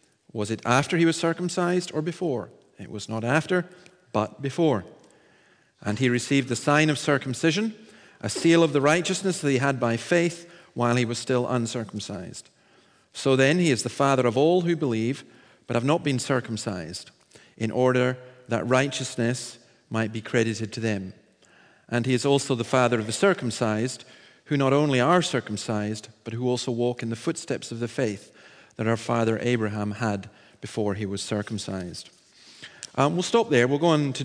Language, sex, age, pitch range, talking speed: English, male, 40-59, 110-145 Hz, 175 wpm